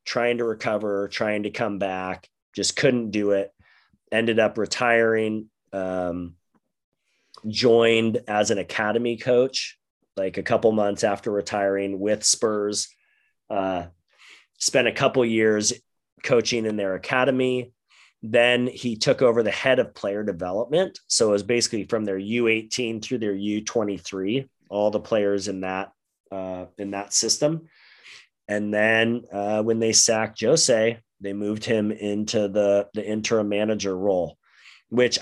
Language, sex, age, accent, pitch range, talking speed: English, male, 30-49, American, 95-115 Hz, 140 wpm